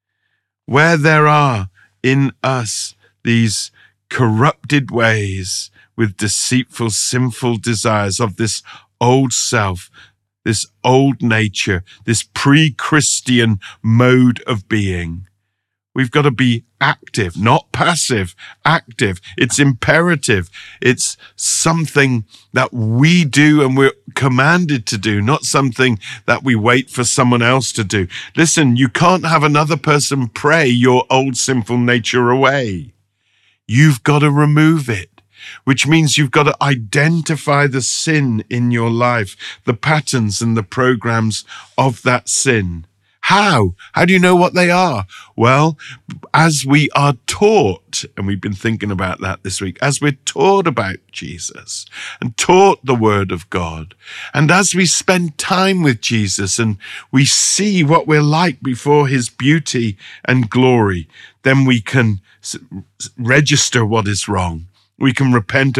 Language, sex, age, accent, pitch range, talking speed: English, male, 50-69, British, 110-145 Hz, 135 wpm